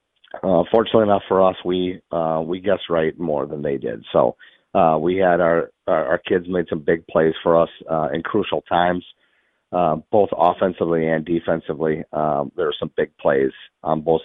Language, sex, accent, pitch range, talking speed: English, male, American, 85-100 Hz, 190 wpm